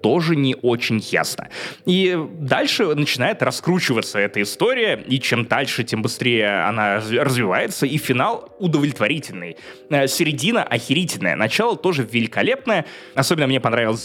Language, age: Russian, 20-39